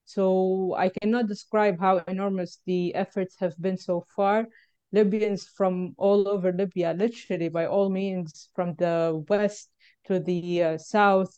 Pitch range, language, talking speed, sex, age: 180-205 Hz, English, 150 wpm, female, 20-39